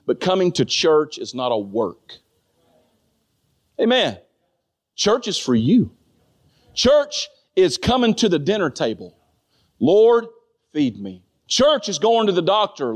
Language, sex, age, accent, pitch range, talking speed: English, male, 40-59, American, 185-270 Hz, 135 wpm